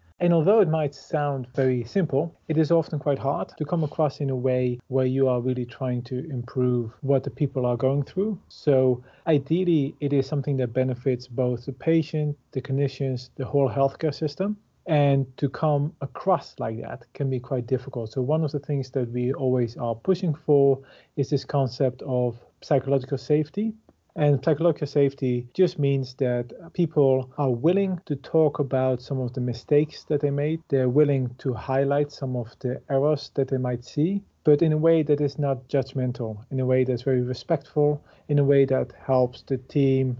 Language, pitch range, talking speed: English, 130-150 Hz, 190 wpm